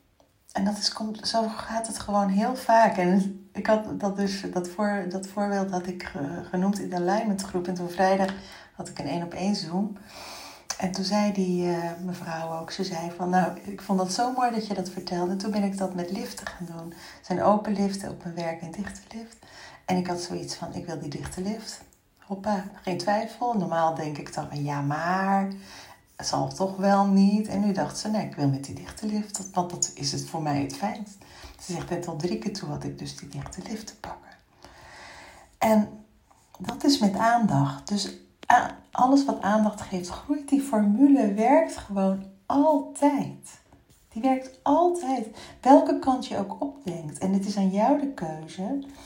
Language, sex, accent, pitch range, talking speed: Dutch, female, Dutch, 175-215 Hz, 200 wpm